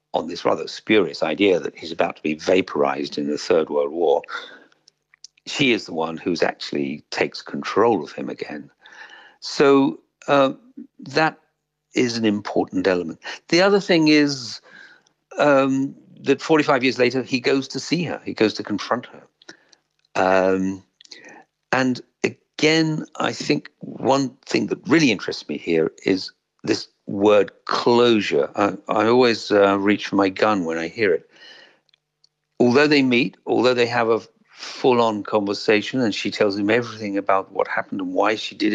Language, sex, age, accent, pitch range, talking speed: English, male, 60-79, British, 105-160 Hz, 160 wpm